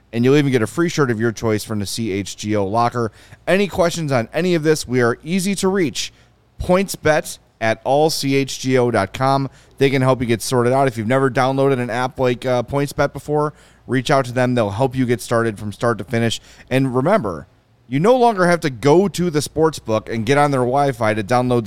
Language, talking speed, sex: English, 215 wpm, male